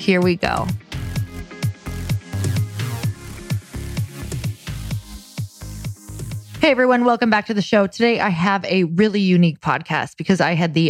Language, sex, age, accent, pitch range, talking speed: English, female, 20-39, American, 165-200 Hz, 115 wpm